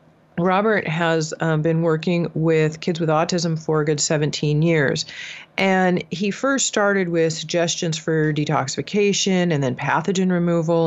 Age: 40-59